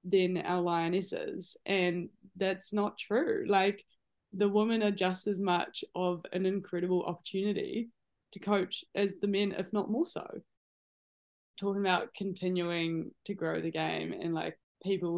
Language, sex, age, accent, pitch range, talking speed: English, female, 20-39, Australian, 170-195 Hz, 145 wpm